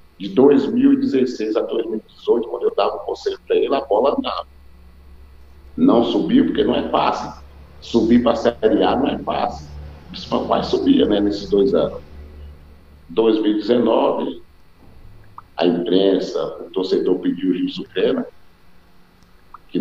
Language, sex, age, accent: Portuguese, male, 50-69, Brazilian